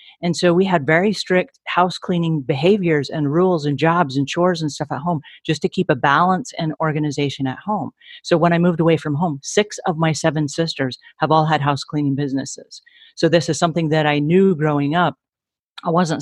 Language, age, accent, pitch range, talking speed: English, 40-59, American, 145-170 Hz, 210 wpm